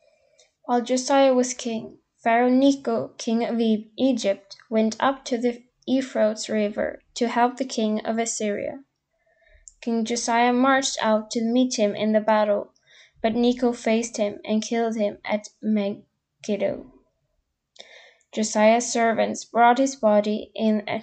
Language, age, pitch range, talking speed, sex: English, 10-29, 215-245 Hz, 135 wpm, female